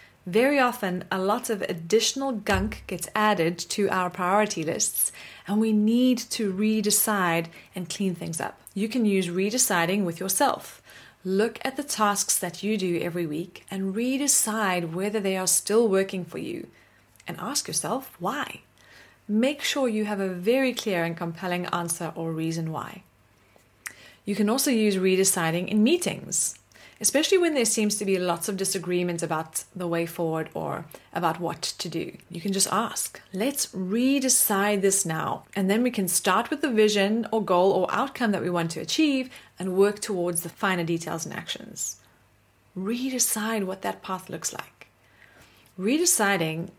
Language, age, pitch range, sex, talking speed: English, 30-49, 175-220 Hz, female, 165 wpm